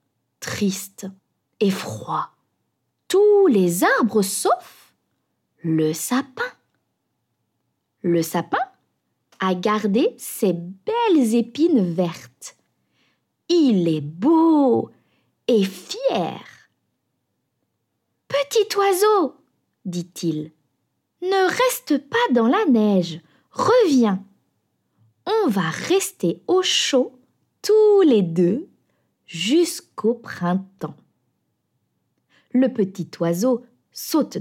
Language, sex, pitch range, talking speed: French, female, 185-300 Hz, 80 wpm